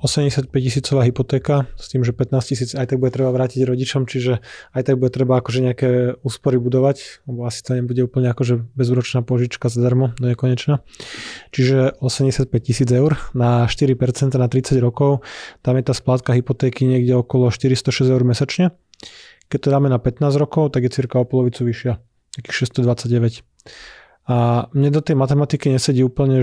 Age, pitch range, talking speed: 20-39, 125-135 Hz, 170 wpm